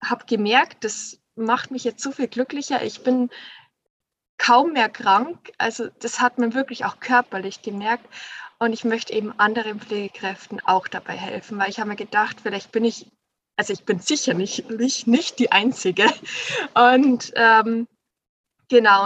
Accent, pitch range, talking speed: German, 215-245 Hz, 155 wpm